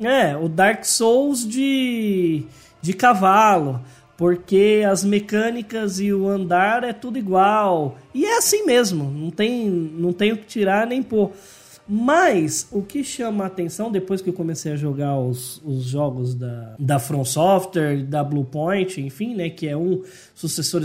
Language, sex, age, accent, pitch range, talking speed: Portuguese, male, 20-39, Brazilian, 150-215 Hz, 160 wpm